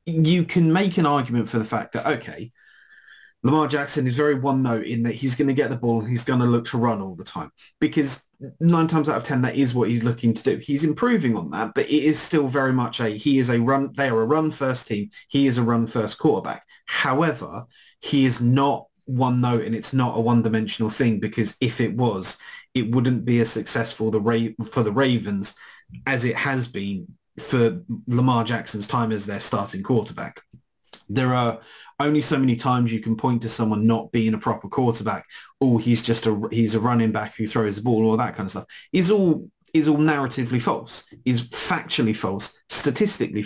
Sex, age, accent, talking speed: male, 30-49, British, 215 wpm